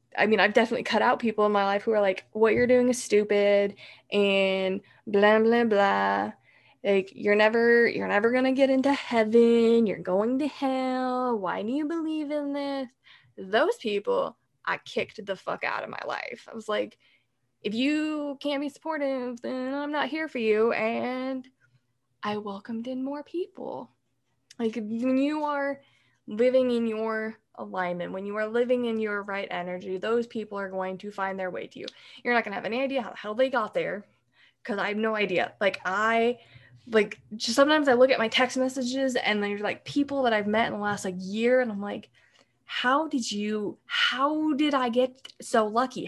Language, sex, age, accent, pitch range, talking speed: English, female, 10-29, American, 205-265 Hz, 195 wpm